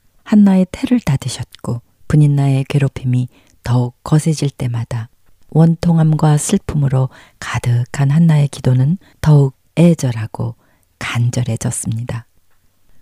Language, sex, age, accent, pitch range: Korean, female, 40-59, native, 120-170 Hz